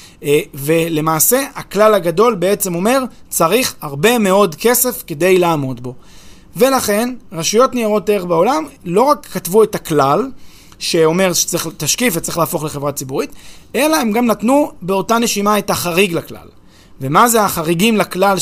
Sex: male